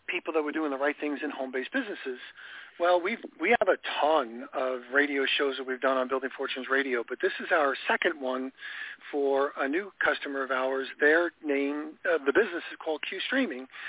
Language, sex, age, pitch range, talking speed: English, male, 50-69, 145-180 Hz, 200 wpm